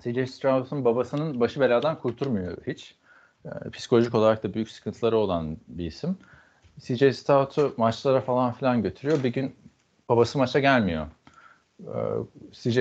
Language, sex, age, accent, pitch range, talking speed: Turkish, male, 40-59, native, 110-135 Hz, 125 wpm